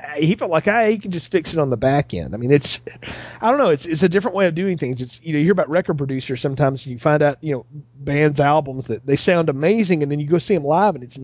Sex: male